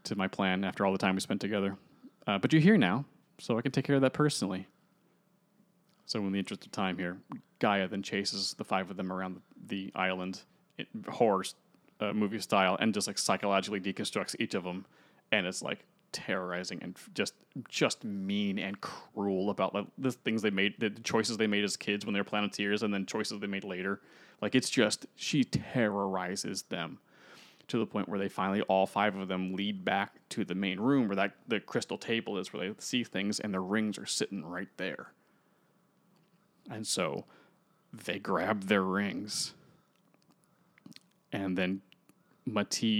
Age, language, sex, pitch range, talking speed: 20-39, English, male, 95-130 Hz, 185 wpm